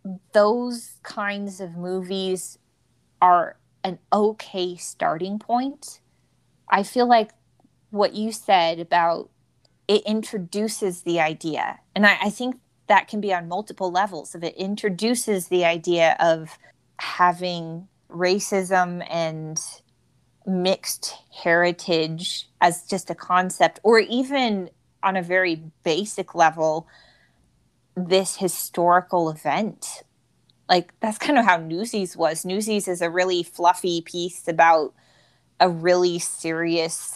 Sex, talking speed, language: female, 115 wpm, English